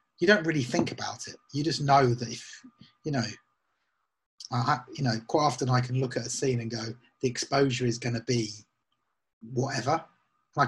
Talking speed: 185 wpm